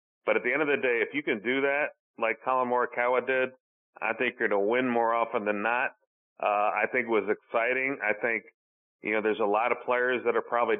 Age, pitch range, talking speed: 40-59, 115-140 Hz, 245 wpm